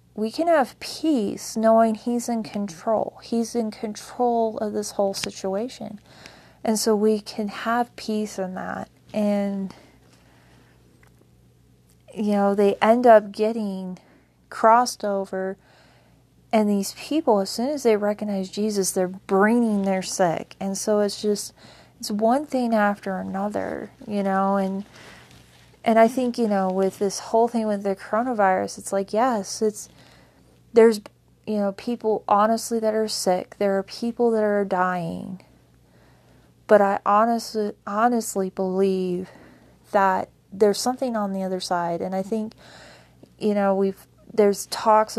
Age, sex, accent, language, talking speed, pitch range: 30-49, female, American, English, 140 wpm, 190-220 Hz